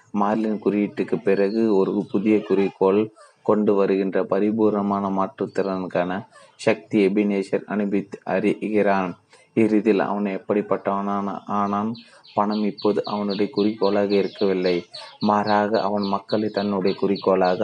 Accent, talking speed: native, 95 wpm